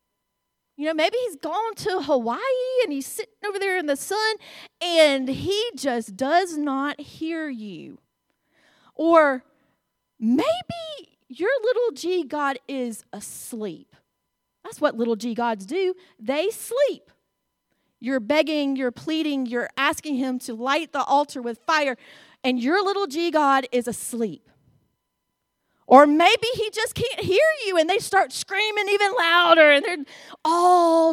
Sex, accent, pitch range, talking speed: female, American, 235-340 Hz, 135 wpm